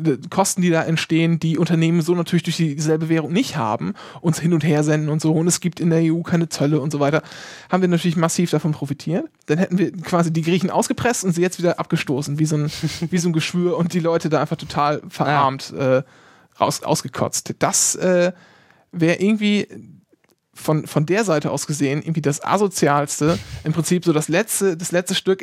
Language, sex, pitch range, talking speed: German, male, 150-180 Hz, 195 wpm